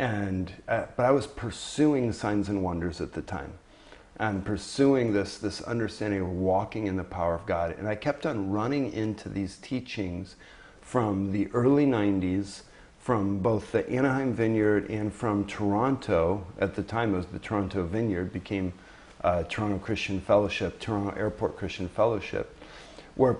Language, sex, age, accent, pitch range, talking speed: English, male, 50-69, American, 95-115 Hz, 160 wpm